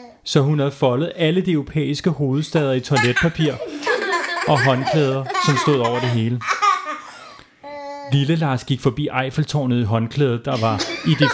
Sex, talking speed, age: male, 145 wpm, 30-49